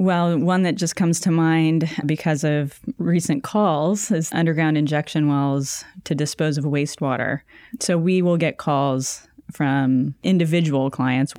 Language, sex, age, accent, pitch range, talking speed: English, female, 20-39, American, 140-170 Hz, 140 wpm